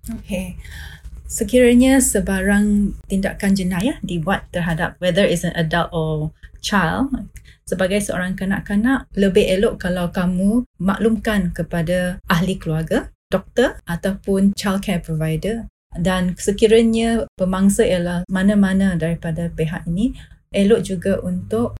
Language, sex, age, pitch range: Malay, female, 30-49, 175-205 Hz